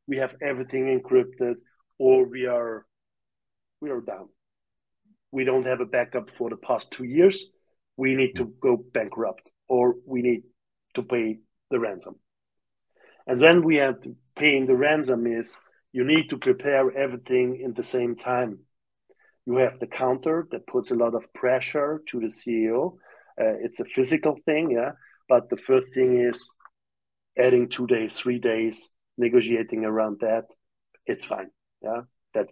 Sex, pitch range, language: male, 120-135 Hz, English